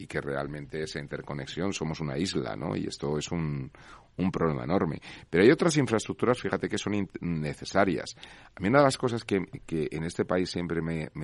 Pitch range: 75-100 Hz